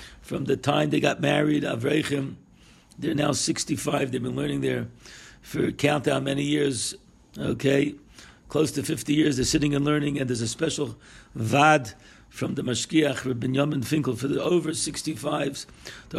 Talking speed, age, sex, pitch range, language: 160 wpm, 60-79, male, 130-150 Hz, English